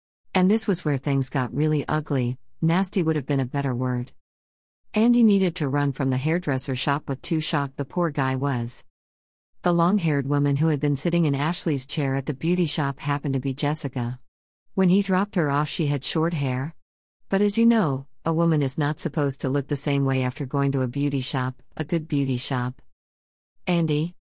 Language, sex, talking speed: English, female, 200 wpm